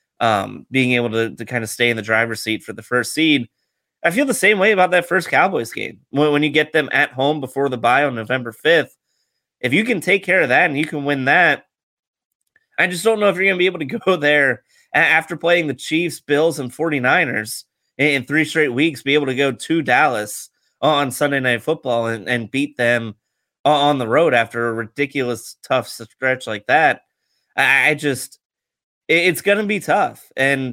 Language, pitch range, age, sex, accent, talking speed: English, 115-145 Hz, 30-49, male, American, 215 wpm